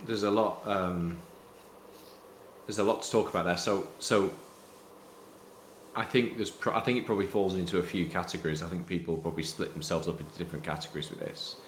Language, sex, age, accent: English, male, 30-49, British